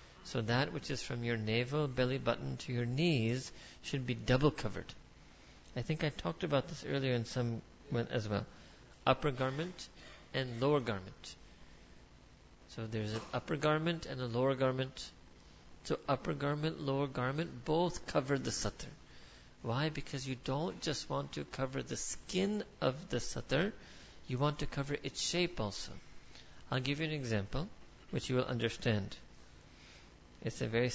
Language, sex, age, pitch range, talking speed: English, male, 50-69, 115-145 Hz, 160 wpm